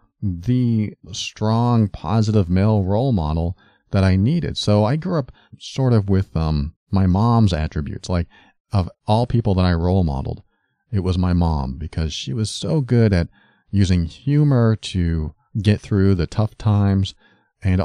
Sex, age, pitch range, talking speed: male, 40-59, 85-110 Hz, 160 wpm